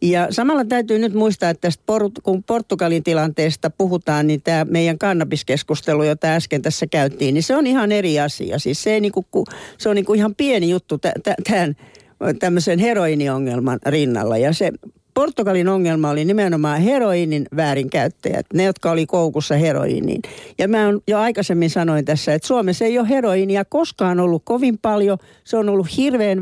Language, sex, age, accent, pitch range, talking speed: Finnish, female, 60-79, native, 160-210 Hz, 160 wpm